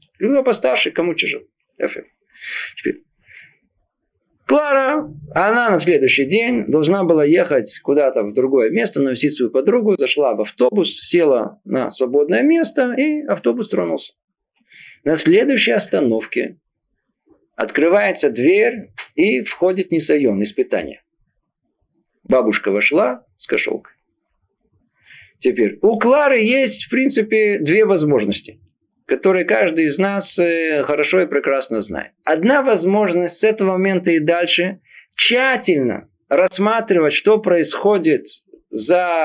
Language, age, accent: Russian, 50-69, native